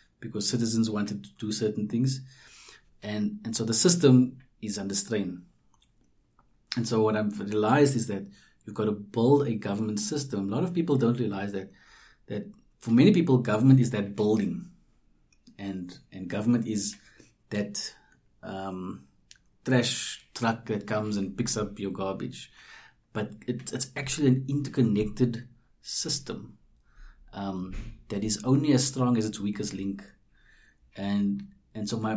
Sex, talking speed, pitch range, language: male, 150 wpm, 105-125 Hz, English